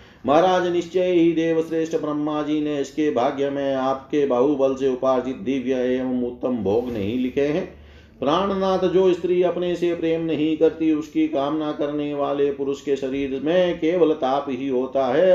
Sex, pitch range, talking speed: male, 135-160 Hz, 170 wpm